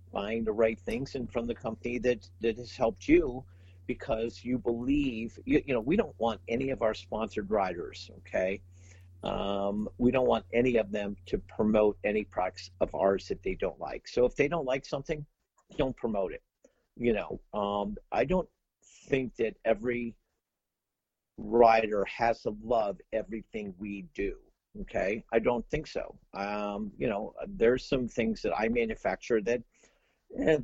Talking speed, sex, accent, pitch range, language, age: 165 wpm, male, American, 100-120 Hz, English, 50-69